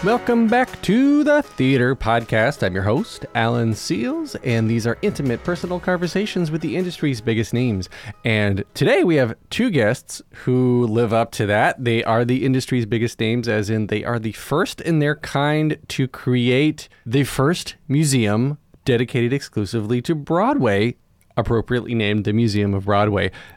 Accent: American